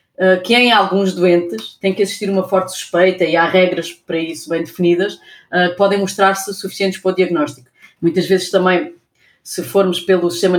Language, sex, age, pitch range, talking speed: Portuguese, female, 20-39, 175-200 Hz, 180 wpm